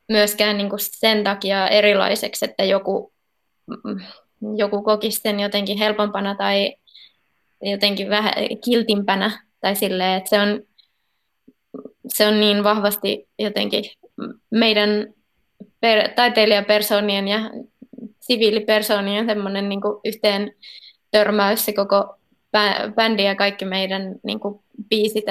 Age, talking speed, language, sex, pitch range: 20-39, 100 wpm, Finnish, female, 200-220 Hz